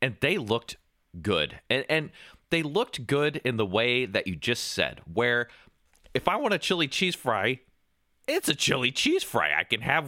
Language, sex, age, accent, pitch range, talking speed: English, male, 30-49, American, 85-135 Hz, 190 wpm